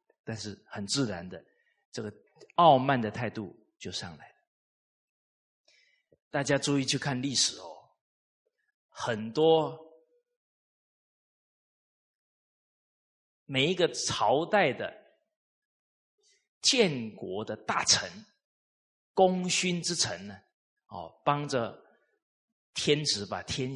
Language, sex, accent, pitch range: Chinese, male, native, 110-170 Hz